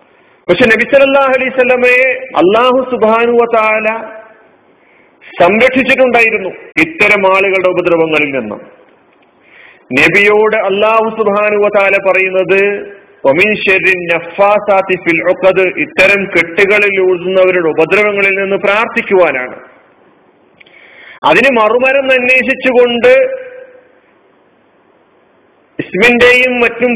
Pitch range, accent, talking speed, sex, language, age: 185-240 Hz, native, 55 wpm, male, Malayalam, 40-59